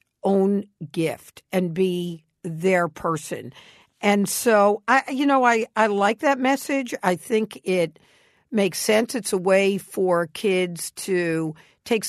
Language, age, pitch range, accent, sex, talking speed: English, 50-69, 185-240 Hz, American, female, 140 wpm